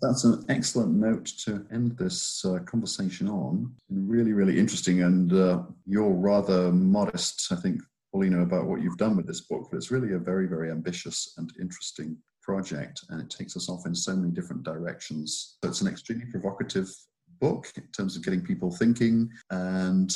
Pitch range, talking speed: 90-125 Hz, 180 wpm